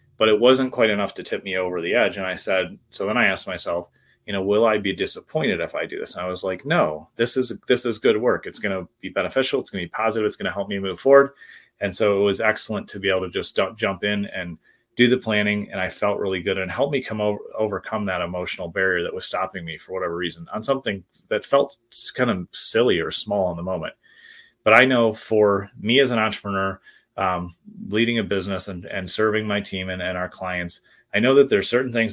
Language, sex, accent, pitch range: English, male, American, 95-115 Hz